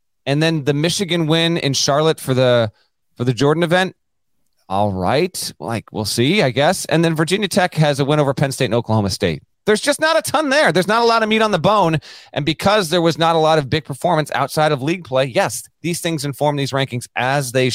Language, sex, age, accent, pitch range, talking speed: English, male, 30-49, American, 110-155 Hz, 235 wpm